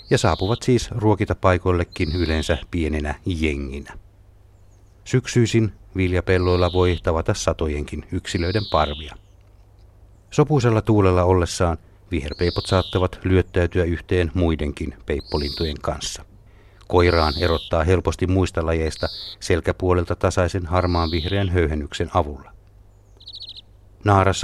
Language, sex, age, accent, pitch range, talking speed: Finnish, male, 60-79, native, 85-100 Hz, 90 wpm